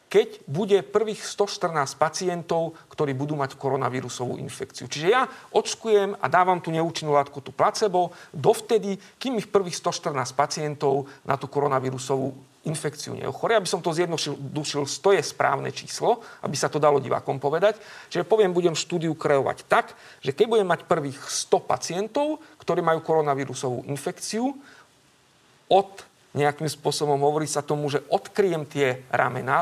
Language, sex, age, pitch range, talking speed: Slovak, male, 50-69, 145-195 Hz, 145 wpm